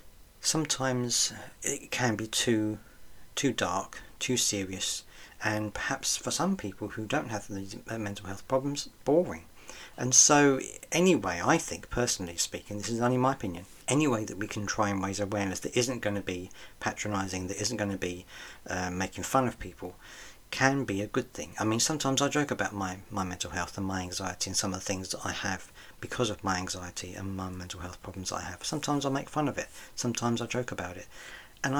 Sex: male